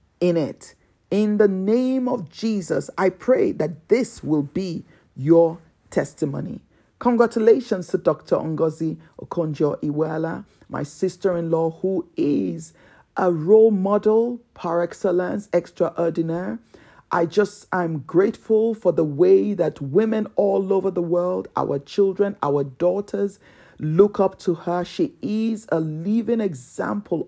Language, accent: English, Nigerian